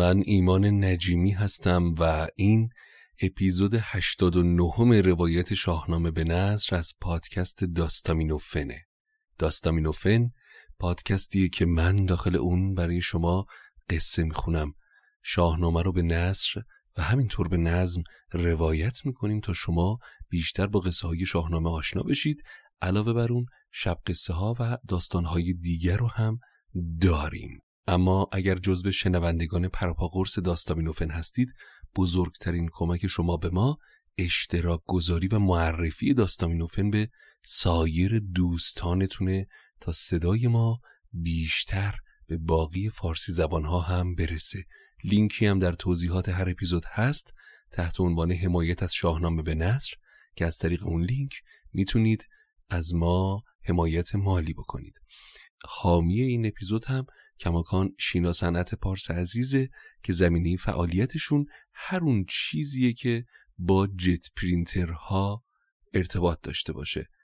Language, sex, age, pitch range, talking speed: Persian, male, 30-49, 85-100 Hz, 120 wpm